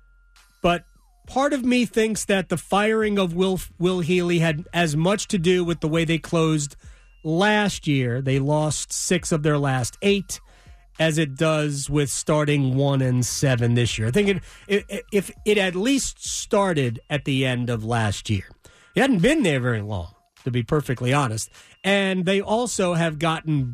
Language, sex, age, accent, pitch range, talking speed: English, male, 40-59, American, 130-195 Hz, 180 wpm